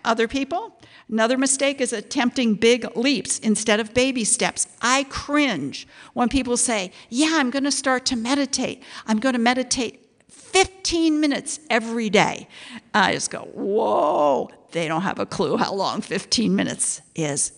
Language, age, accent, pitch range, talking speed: English, 50-69, American, 215-280 Hz, 155 wpm